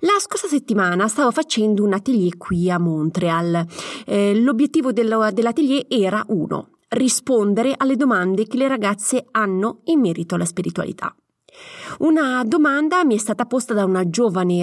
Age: 30-49